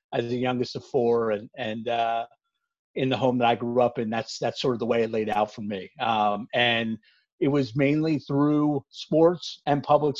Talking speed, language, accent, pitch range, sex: 210 wpm, English, American, 125-145 Hz, male